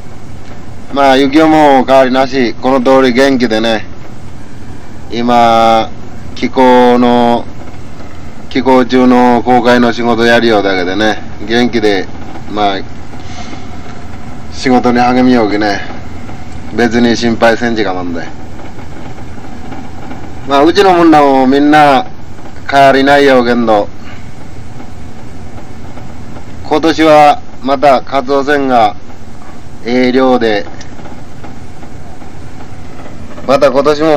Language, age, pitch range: Japanese, 30-49, 105-130 Hz